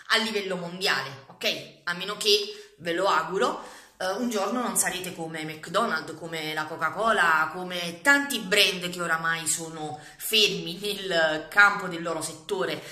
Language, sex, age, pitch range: English, female, 30-49, 165-250 Hz